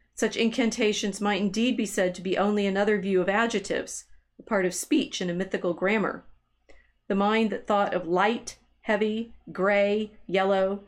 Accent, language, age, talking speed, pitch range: American, English, 40-59, 165 wpm, 185-220 Hz